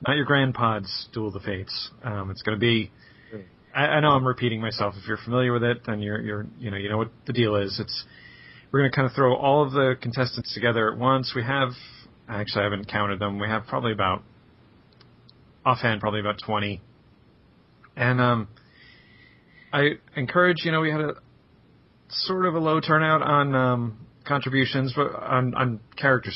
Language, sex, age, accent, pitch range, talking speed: English, male, 30-49, American, 105-140 Hz, 190 wpm